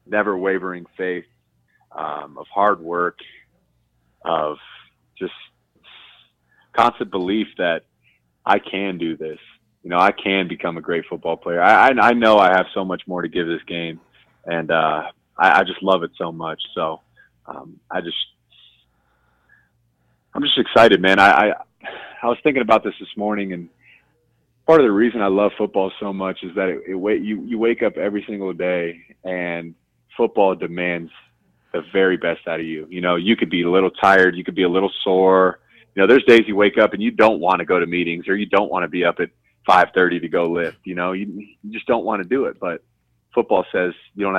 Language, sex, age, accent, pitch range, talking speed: English, male, 30-49, American, 85-100 Hz, 200 wpm